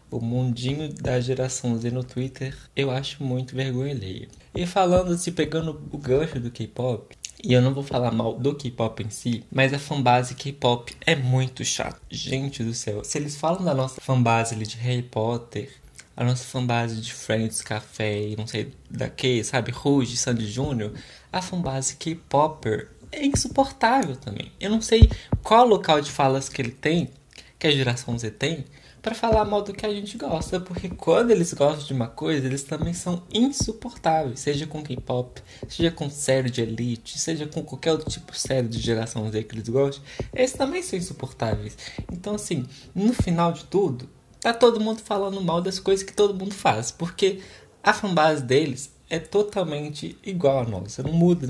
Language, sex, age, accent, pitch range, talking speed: Portuguese, male, 20-39, Brazilian, 125-165 Hz, 180 wpm